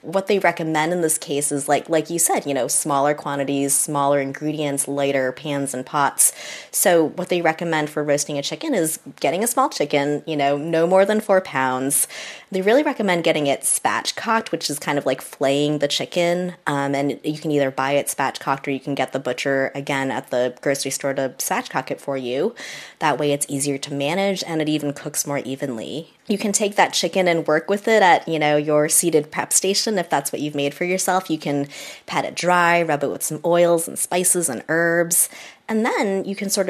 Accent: American